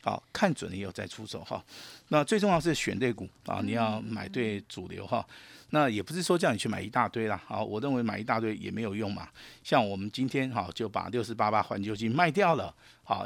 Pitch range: 105-140 Hz